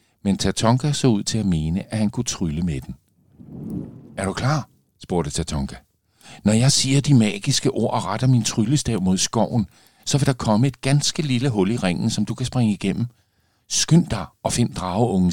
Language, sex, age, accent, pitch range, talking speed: Danish, male, 50-69, native, 85-115 Hz, 195 wpm